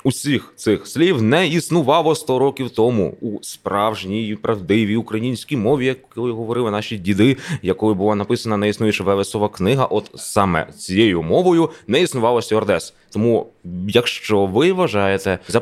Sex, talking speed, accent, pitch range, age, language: male, 140 wpm, native, 95-125 Hz, 20-39, Ukrainian